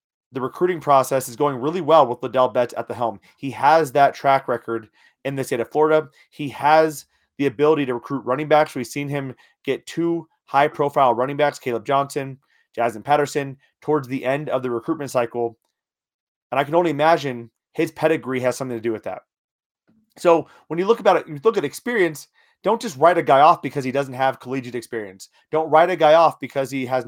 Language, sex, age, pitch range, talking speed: English, male, 30-49, 130-165 Hz, 205 wpm